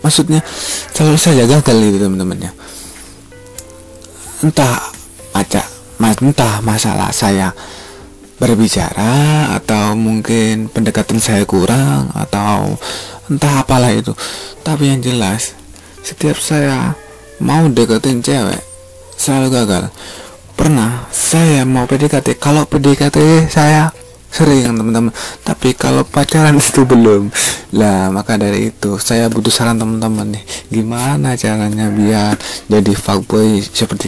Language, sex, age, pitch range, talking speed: Indonesian, male, 20-39, 100-135 Hz, 105 wpm